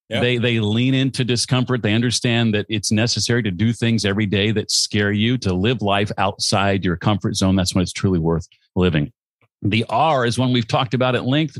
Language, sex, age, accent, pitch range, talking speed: English, male, 50-69, American, 100-130 Hz, 205 wpm